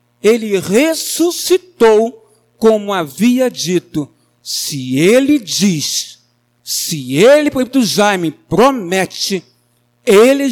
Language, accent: Portuguese, Brazilian